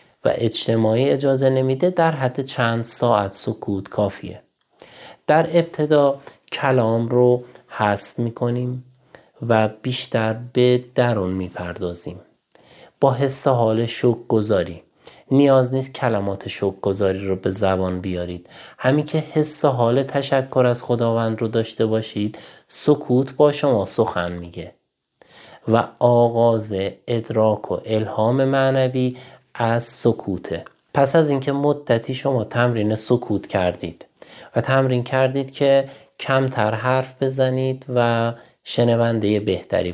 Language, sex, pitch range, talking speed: Persian, male, 105-130 Hz, 115 wpm